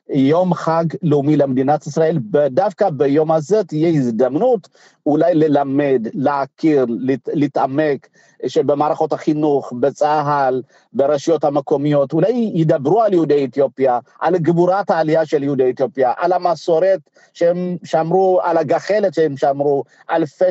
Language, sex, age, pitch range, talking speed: Hebrew, male, 50-69, 145-180 Hz, 115 wpm